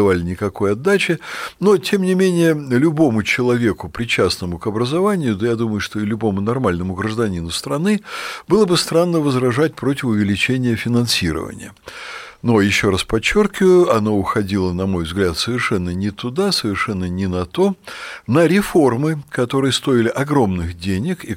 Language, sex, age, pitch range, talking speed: Russian, male, 60-79, 95-155 Hz, 140 wpm